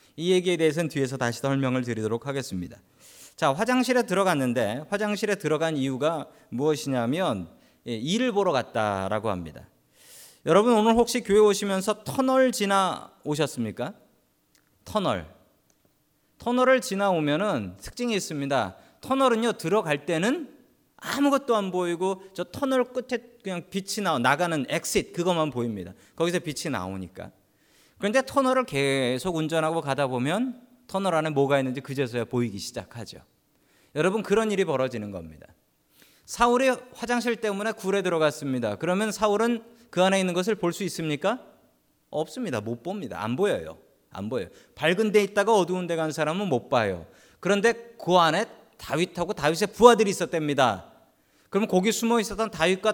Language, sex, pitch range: Korean, male, 140-220 Hz